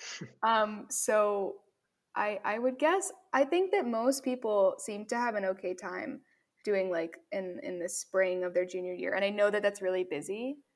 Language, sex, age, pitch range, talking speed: English, female, 10-29, 185-275 Hz, 190 wpm